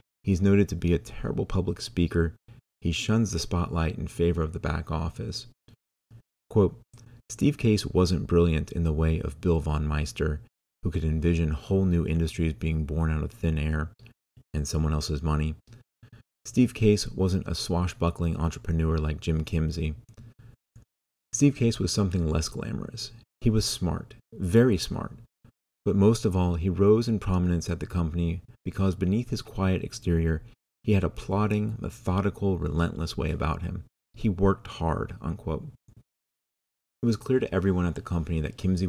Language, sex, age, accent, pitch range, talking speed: English, male, 30-49, American, 80-105 Hz, 160 wpm